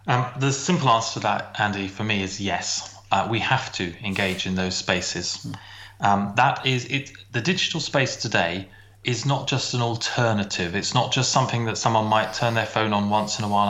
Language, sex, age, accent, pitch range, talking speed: English, male, 30-49, British, 100-130 Hz, 205 wpm